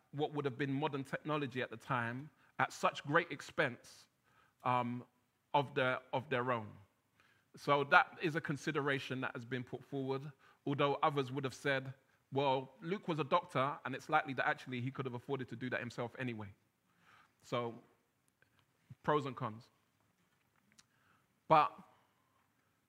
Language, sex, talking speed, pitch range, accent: English, male, 150 wpm, 130-165 Hz, British